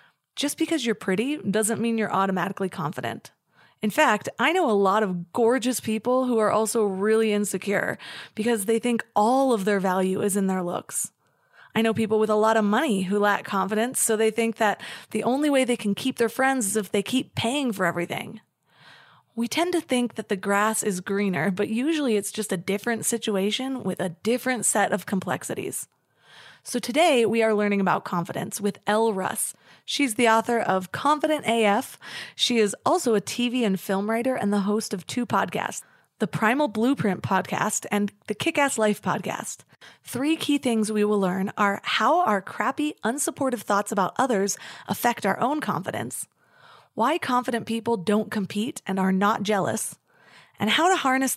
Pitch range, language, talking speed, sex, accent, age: 200-245 Hz, English, 180 wpm, female, American, 20-39